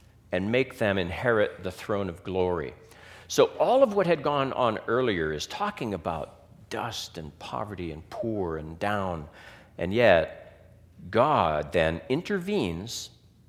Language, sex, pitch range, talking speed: English, male, 95-135 Hz, 140 wpm